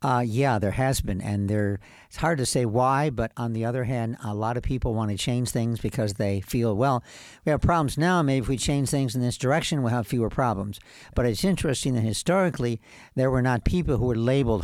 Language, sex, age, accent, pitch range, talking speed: English, male, 60-79, American, 105-135 Hz, 235 wpm